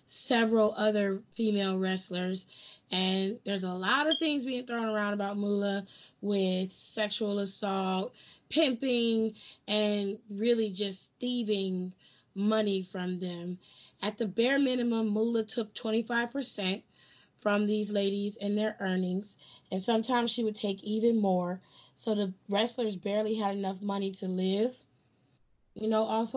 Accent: American